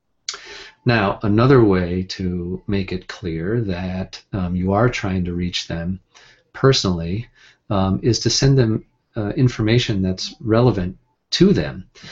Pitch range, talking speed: 95-125 Hz, 135 wpm